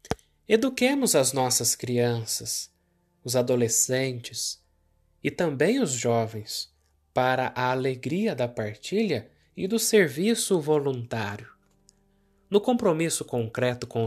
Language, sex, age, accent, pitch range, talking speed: Portuguese, male, 20-39, Brazilian, 110-150 Hz, 100 wpm